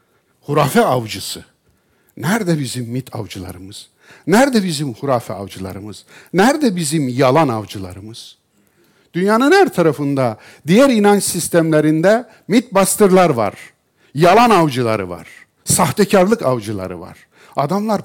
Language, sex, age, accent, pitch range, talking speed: Turkish, male, 60-79, native, 125-200 Hz, 100 wpm